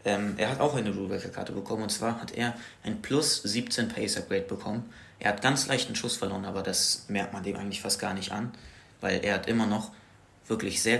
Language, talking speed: German, 205 wpm